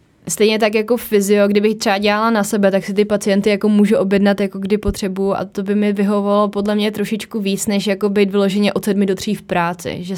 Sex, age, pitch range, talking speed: female, 20-39, 175-205 Hz, 230 wpm